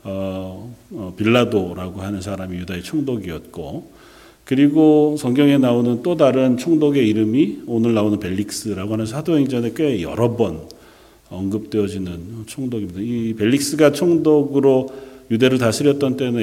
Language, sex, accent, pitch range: Korean, male, native, 100-130 Hz